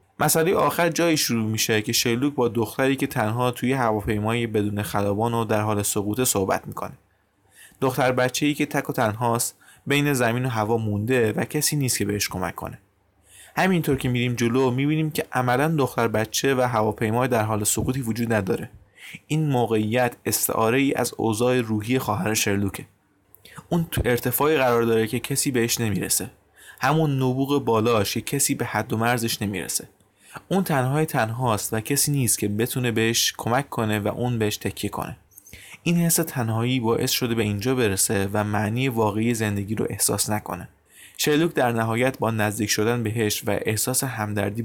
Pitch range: 105-130 Hz